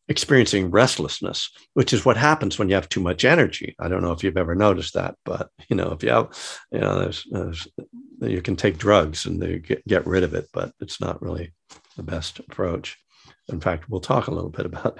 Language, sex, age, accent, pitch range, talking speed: English, male, 60-79, American, 95-130 Hz, 225 wpm